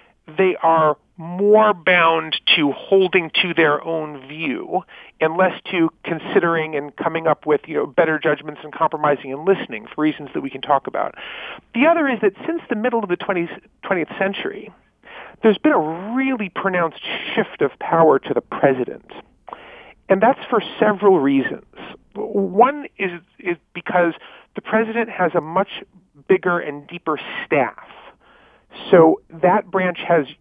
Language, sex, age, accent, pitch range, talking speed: English, male, 40-59, American, 160-200 Hz, 150 wpm